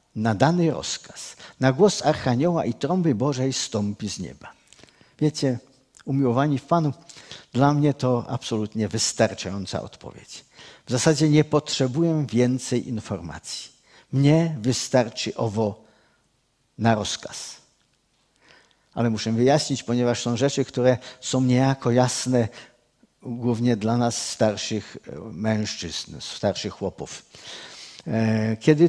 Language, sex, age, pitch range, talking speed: Czech, male, 50-69, 115-145 Hz, 105 wpm